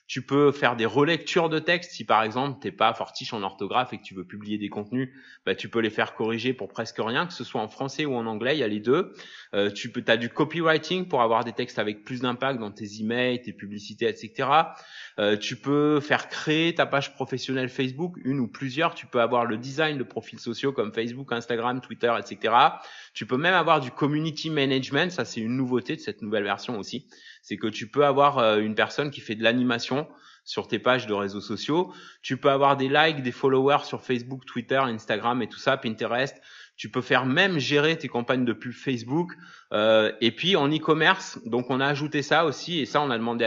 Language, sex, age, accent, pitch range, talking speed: French, male, 20-39, French, 110-140 Hz, 225 wpm